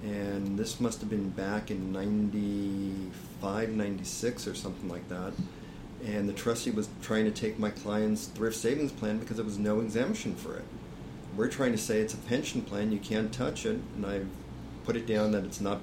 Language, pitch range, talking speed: English, 100-110 Hz, 195 wpm